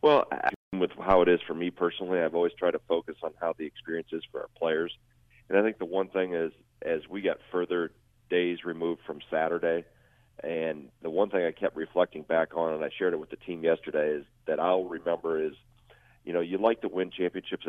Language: English